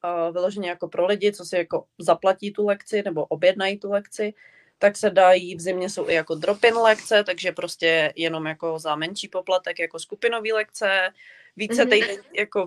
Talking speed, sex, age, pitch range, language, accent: 180 wpm, female, 20-39, 165-205 Hz, Czech, native